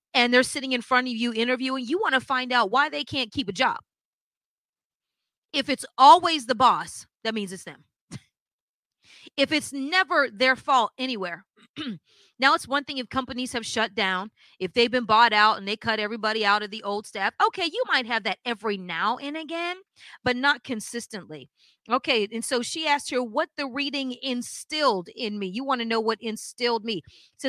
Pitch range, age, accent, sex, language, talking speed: 210-275 Hz, 30-49, American, female, English, 195 wpm